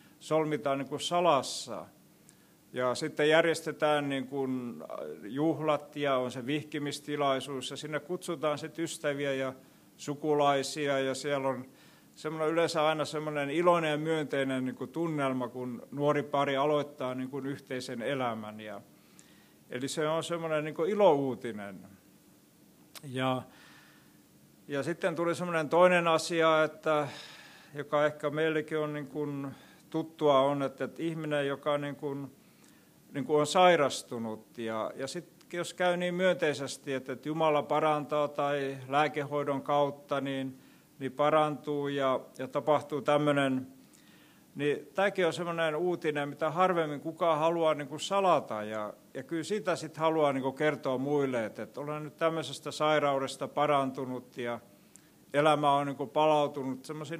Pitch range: 135-155 Hz